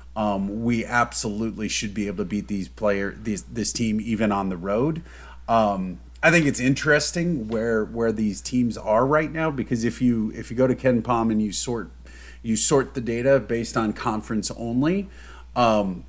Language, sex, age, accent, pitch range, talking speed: English, male, 30-49, American, 100-130 Hz, 185 wpm